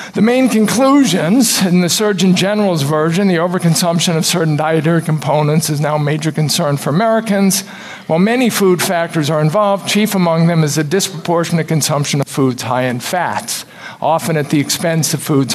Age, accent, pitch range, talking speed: 50-69, American, 150-195 Hz, 175 wpm